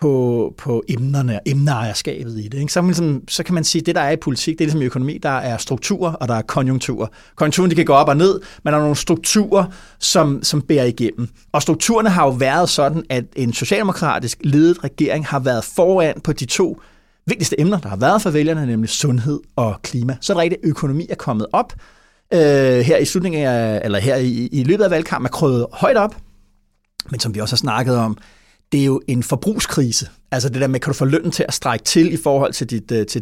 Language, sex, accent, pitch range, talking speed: Danish, male, native, 125-170 Hz, 235 wpm